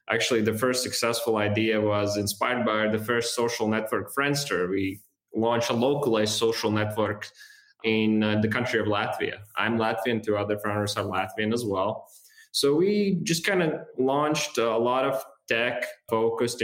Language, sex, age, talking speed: English, male, 20-39, 160 wpm